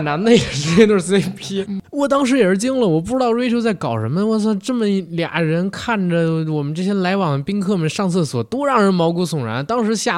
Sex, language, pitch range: male, Chinese, 125-180 Hz